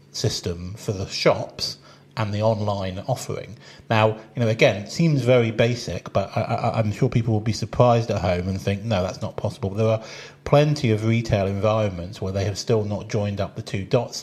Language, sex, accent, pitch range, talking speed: English, male, British, 100-120 Hz, 205 wpm